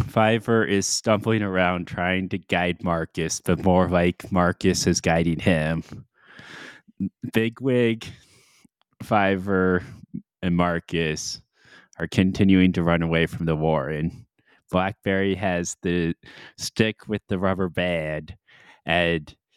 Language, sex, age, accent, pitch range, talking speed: English, male, 20-39, American, 85-105 Hz, 115 wpm